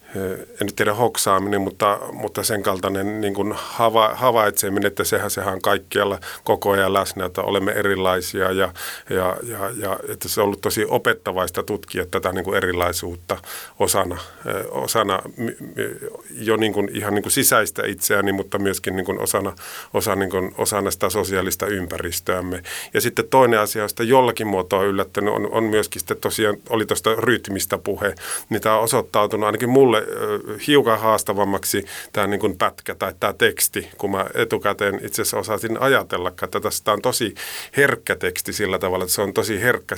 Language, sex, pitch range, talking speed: Finnish, male, 95-110 Hz, 160 wpm